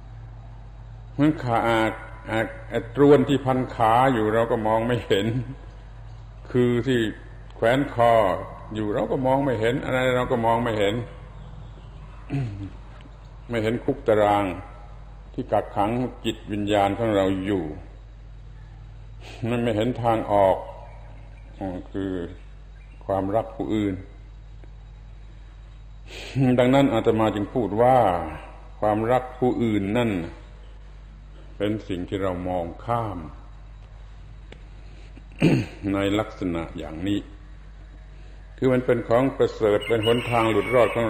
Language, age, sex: Thai, 60-79, male